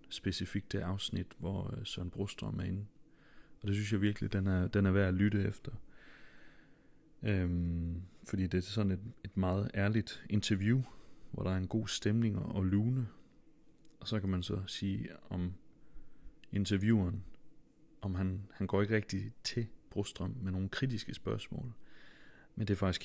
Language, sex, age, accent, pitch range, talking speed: Danish, male, 30-49, native, 95-110 Hz, 165 wpm